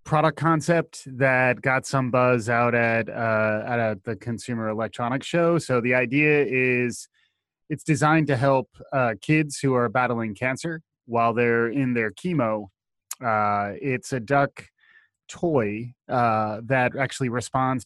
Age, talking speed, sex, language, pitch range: 30-49, 145 wpm, male, English, 110-135 Hz